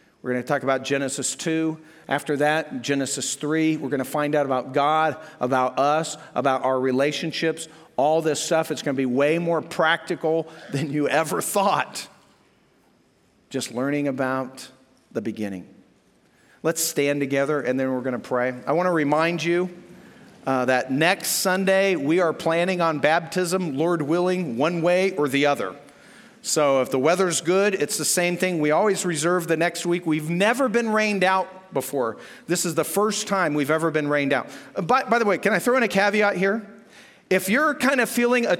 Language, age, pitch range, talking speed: English, 50-69, 145-195 Hz, 185 wpm